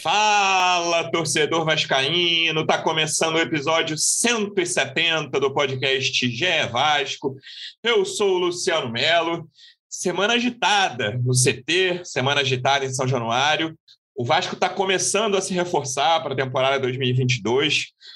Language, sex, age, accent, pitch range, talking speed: Portuguese, male, 30-49, Brazilian, 120-165 Hz, 120 wpm